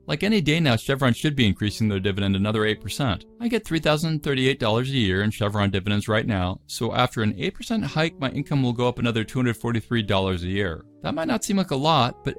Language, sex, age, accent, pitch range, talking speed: English, male, 40-59, American, 105-145 Hz, 215 wpm